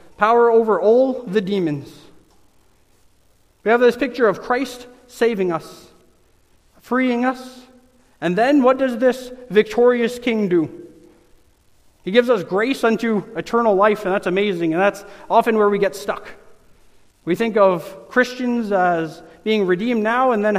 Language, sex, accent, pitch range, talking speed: English, male, American, 190-250 Hz, 145 wpm